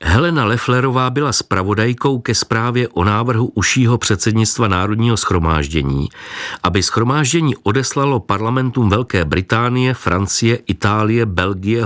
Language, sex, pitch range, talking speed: Czech, male, 95-125 Hz, 105 wpm